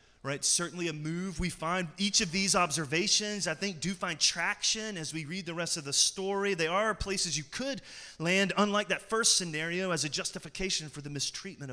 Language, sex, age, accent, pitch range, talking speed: English, male, 30-49, American, 130-185 Hz, 200 wpm